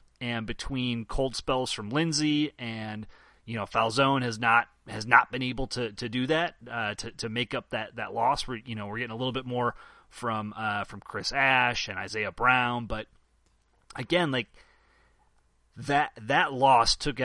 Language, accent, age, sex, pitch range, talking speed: English, American, 30-49, male, 110-135 Hz, 180 wpm